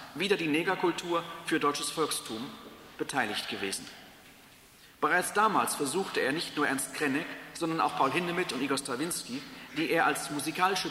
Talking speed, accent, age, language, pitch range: 150 wpm, German, 40-59, German, 140-190 Hz